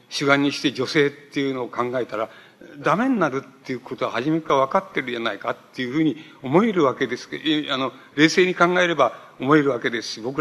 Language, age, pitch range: Japanese, 60-79, 125-155 Hz